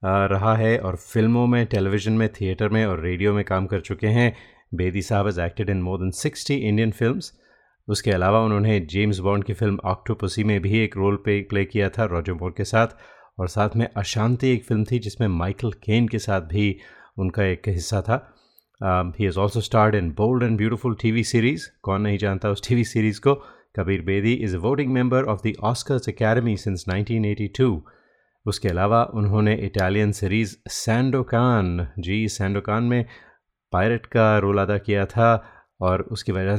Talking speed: 175 wpm